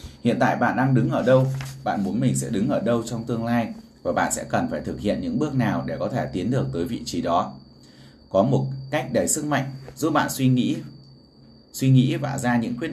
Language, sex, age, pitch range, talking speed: Vietnamese, male, 20-39, 110-130 Hz, 240 wpm